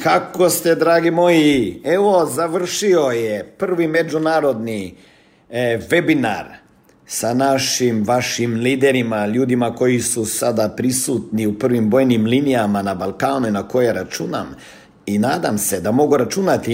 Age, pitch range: 50-69, 115-150 Hz